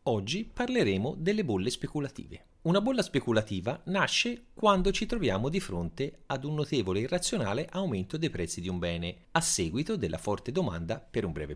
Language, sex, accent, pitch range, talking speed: Italian, male, native, 95-155 Hz, 170 wpm